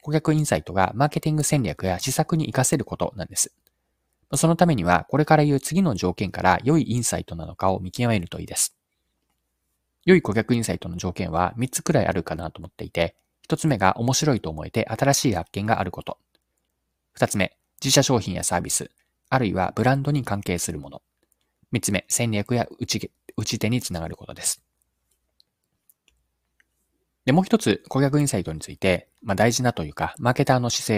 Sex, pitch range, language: male, 90-145 Hz, Japanese